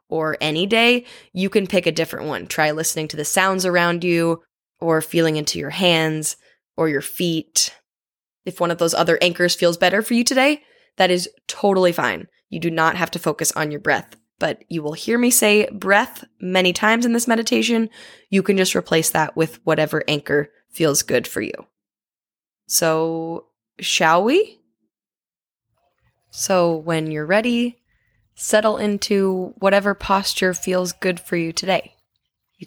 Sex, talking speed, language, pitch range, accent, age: female, 165 wpm, English, 155-200 Hz, American, 10-29